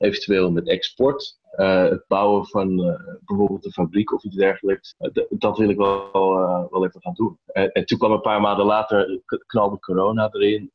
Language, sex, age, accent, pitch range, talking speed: Dutch, male, 30-49, Dutch, 95-110 Hz, 200 wpm